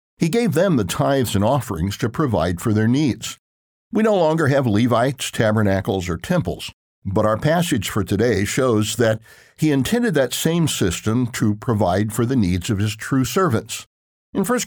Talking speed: 175 wpm